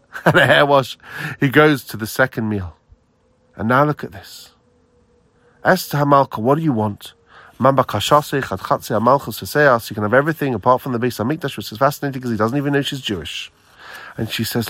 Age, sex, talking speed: 40-59, male, 165 wpm